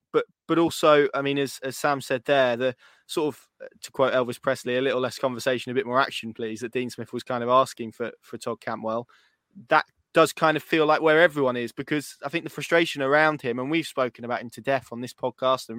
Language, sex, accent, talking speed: English, male, British, 245 wpm